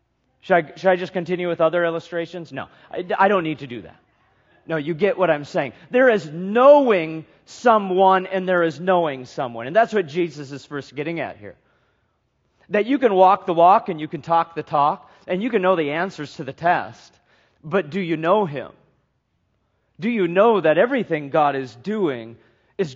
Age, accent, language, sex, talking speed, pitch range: 40-59, American, English, male, 195 wpm, 135-185 Hz